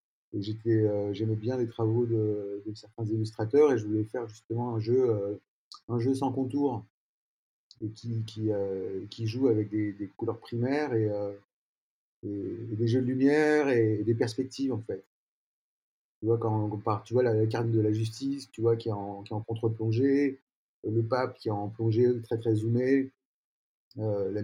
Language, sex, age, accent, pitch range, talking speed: French, male, 30-49, French, 110-125 Hz, 200 wpm